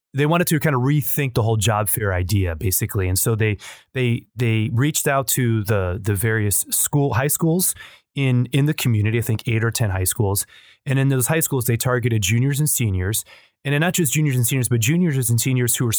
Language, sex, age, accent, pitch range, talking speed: English, male, 30-49, American, 105-135 Hz, 220 wpm